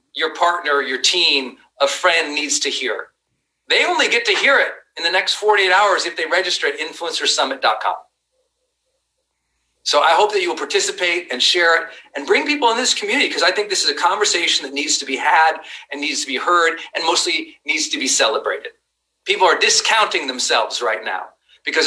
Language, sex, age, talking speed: English, male, 40-59, 195 wpm